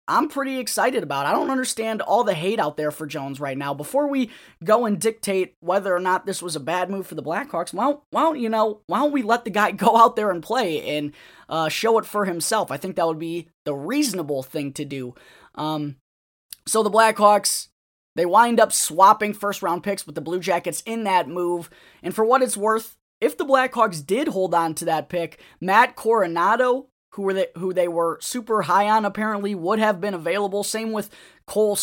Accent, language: American, English